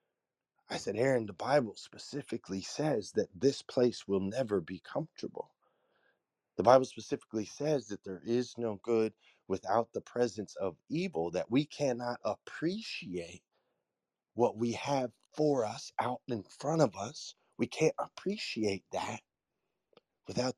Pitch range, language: 105-140 Hz, English